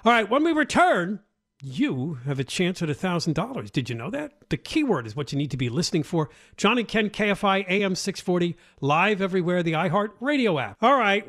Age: 50-69